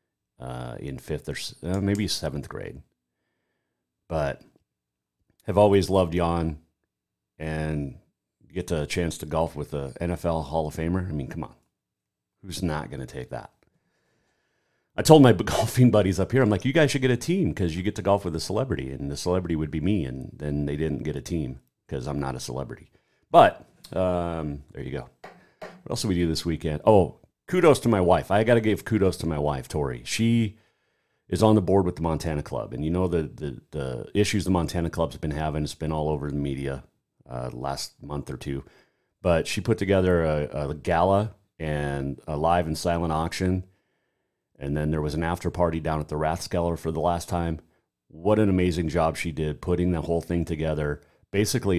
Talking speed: 200 wpm